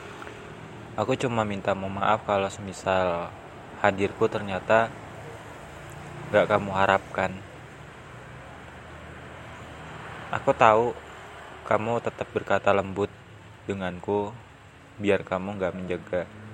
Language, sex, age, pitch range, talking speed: Indonesian, male, 20-39, 95-120 Hz, 80 wpm